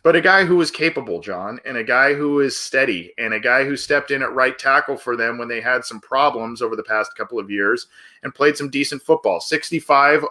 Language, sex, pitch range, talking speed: English, male, 115-140 Hz, 240 wpm